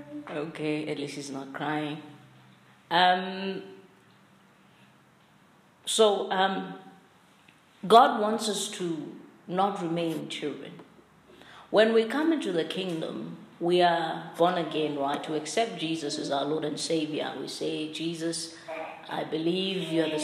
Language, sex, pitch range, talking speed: English, female, 155-180 Hz, 125 wpm